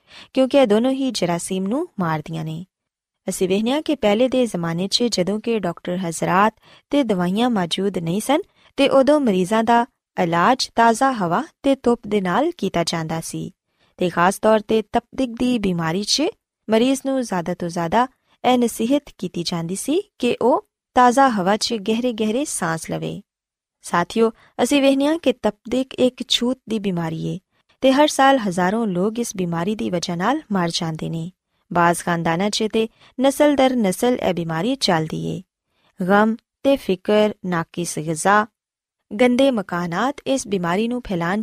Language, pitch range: Punjabi, 180-250 Hz